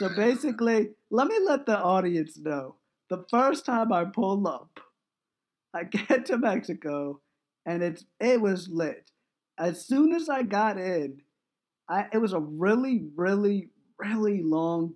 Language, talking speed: English, 150 wpm